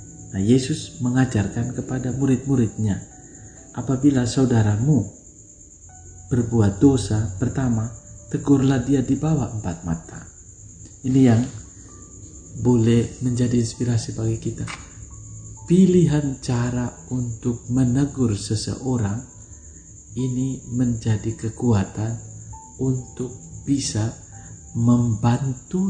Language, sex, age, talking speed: Indonesian, male, 50-69, 80 wpm